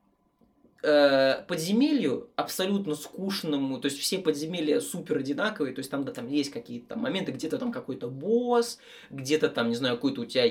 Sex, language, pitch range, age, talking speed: male, Russian, 145-215 Hz, 20-39, 170 wpm